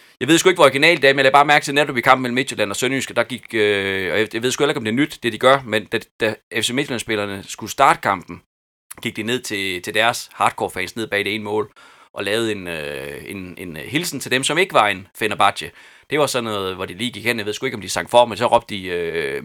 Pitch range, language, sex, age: 105-140 Hz, Danish, male, 30-49